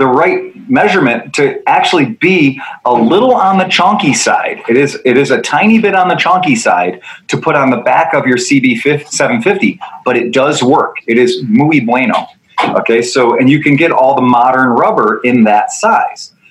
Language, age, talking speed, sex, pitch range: English, 30-49, 195 wpm, male, 115-185 Hz